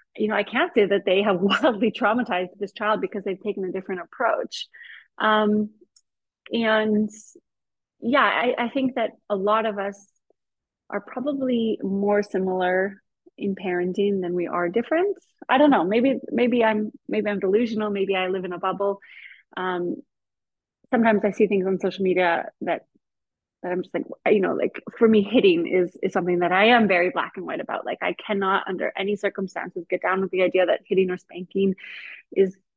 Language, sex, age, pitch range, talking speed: English, female, 30-49, 190-240 Hz, 180 wpm